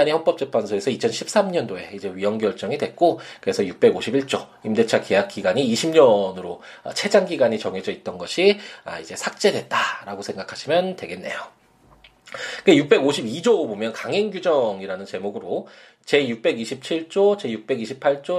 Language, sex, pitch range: Korean, male, 130-200 Hz